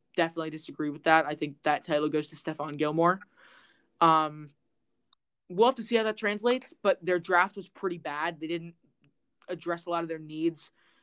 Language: English